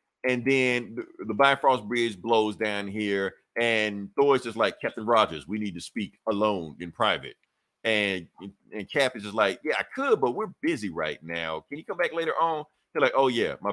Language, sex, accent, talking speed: English, male, American, 205 wpm